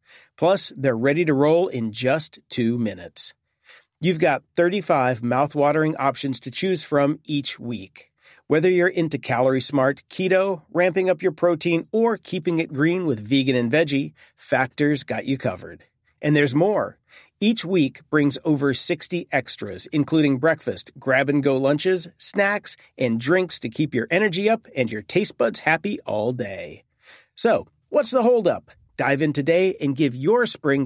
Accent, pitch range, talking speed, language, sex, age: American, 135-175 Hz, 165 wpm, English, male, 40-59